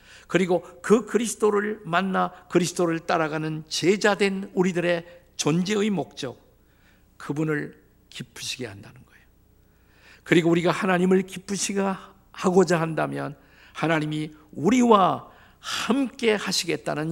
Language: Korean